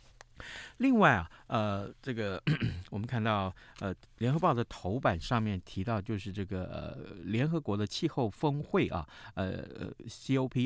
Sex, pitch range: male, 95-130 Hz